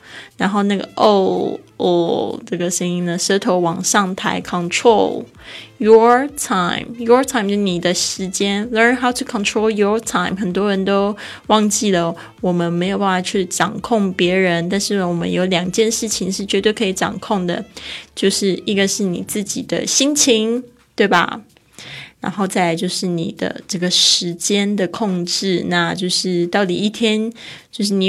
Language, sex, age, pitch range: Chinese, female, 20-39, 175-210 Hz